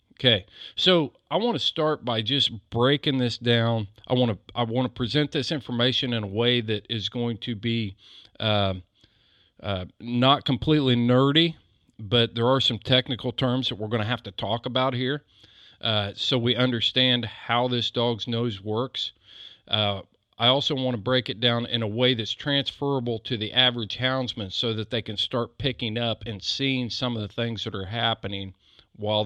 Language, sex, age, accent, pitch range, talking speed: English, male, 40-59, American, 110-130 Hz, 185 wpm